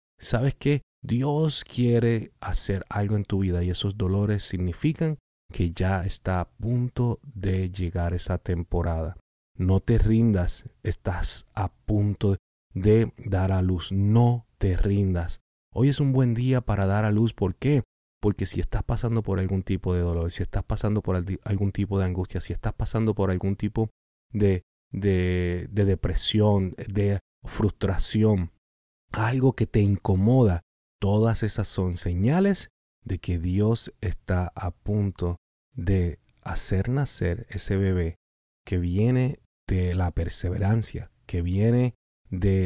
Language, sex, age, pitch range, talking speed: Spanish, male, 30-49, 90-110 Hz, 140 wpm